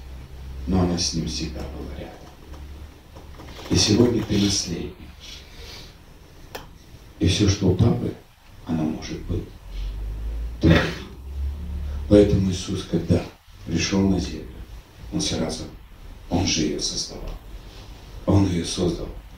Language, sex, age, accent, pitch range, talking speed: Russian, male, 40-59, native, 80-100 Hz, 105 wpm